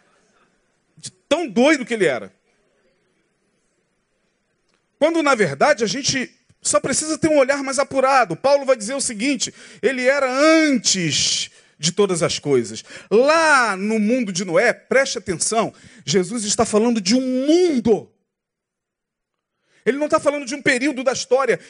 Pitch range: 230-280 Hz